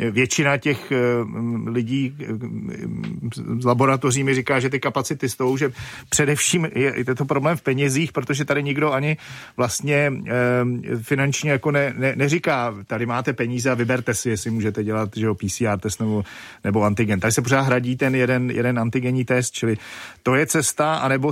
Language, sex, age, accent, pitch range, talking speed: Czech, male, 40-59, native, 120-140 Hz, 165 wpm